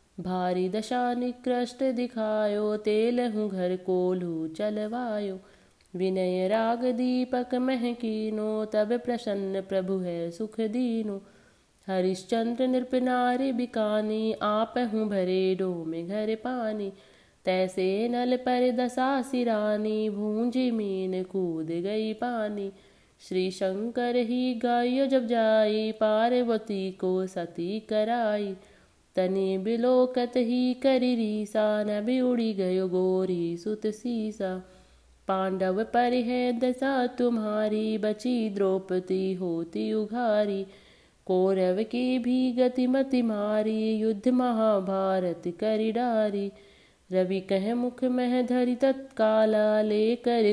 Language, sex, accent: Marathi, female, native